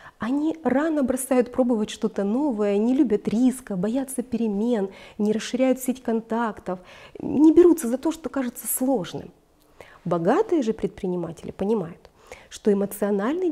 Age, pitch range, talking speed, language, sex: 30-49, 205-275 Hz, 125 wpm, Russian, female